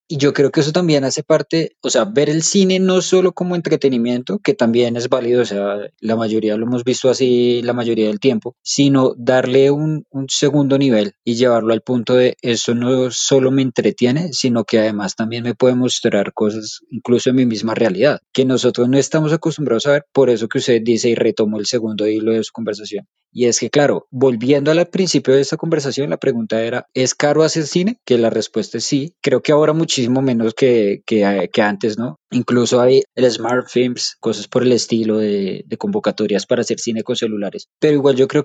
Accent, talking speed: Colombian, 210 wpm